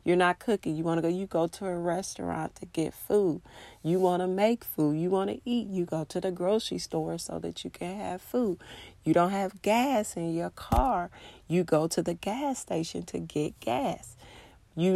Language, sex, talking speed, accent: English, female, 200 wpm, American